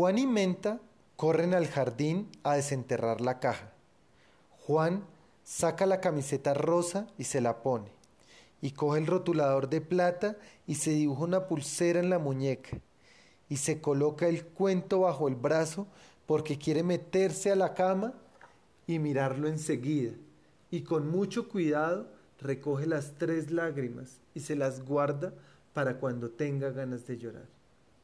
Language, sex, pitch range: Spanish, male, 140-185 Hz